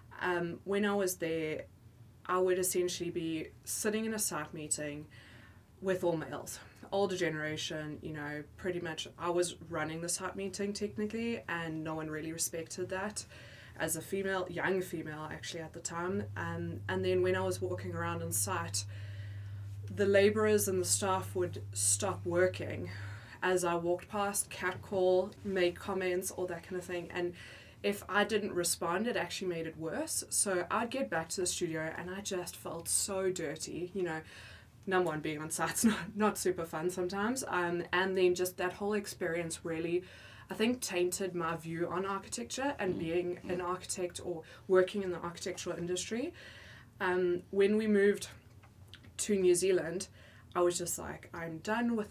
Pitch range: 150-185 Hz